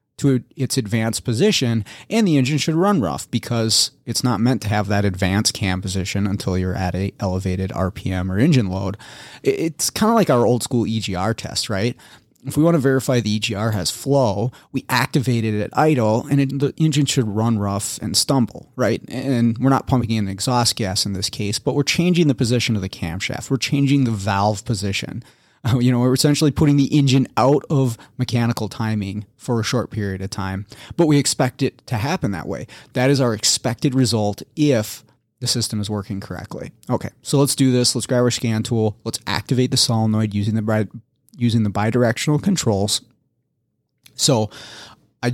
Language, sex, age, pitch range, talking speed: English, male, 30-49, 105-135 Hz, 190 wpm